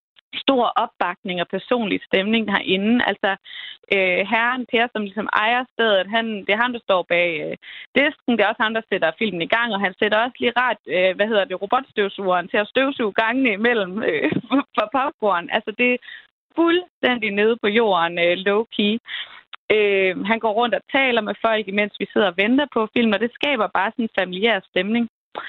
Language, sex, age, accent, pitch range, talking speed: Danish, female, 20-39, native, 195-245 Hz, 195 wpm